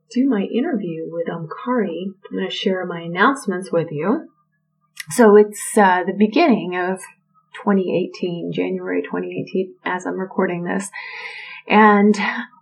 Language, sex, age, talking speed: English, female, 30-49, 135 wpm